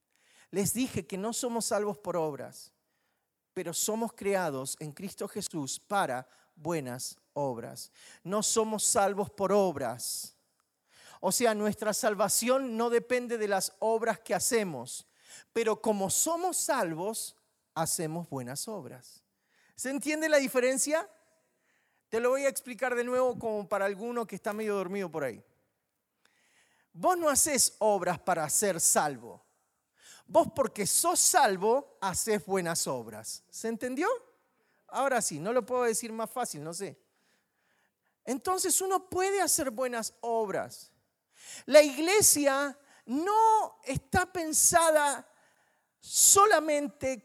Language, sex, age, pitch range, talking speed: Spanish, male, 40-59, 200-280 Hz, 125 wpm